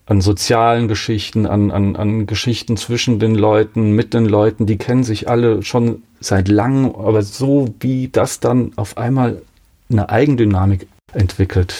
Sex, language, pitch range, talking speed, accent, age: male, German, 95-120 Hz, 145 wpm, German, 40-59